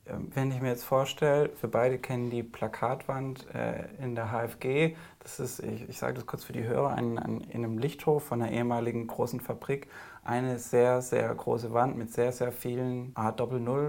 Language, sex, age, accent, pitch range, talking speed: German, male, 20-39, German, 115-140 Hz, 180 wpm